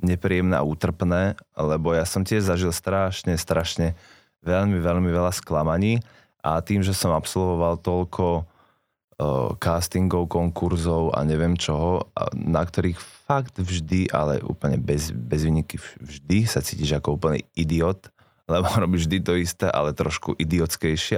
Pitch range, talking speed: 80-95 Hz, 140 wpm